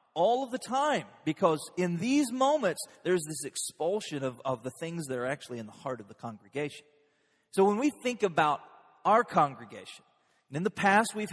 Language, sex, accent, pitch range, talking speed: English, male, American, 145-200 Hz, 190 wpm